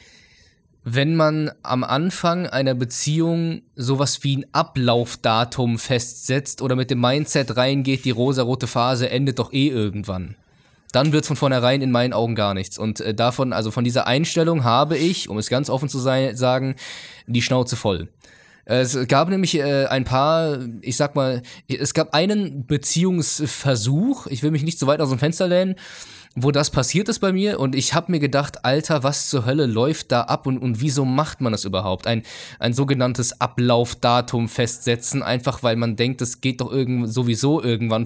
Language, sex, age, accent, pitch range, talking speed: German, male, 20-39, German, 120-145 Hz, 180 wpm